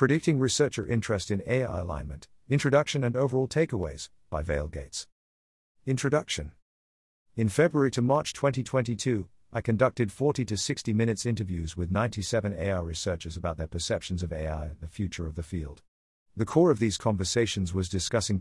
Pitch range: 90-125 Hz